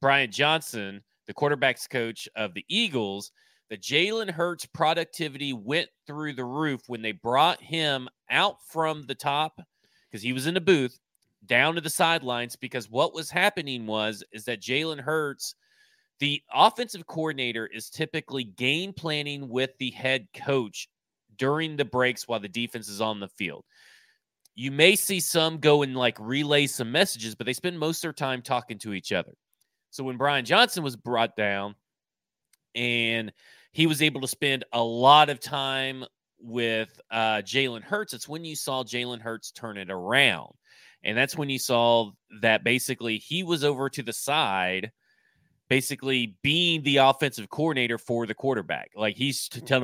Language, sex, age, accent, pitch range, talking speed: English, male, 30-49, American, 115-155 Hz, 165 wpm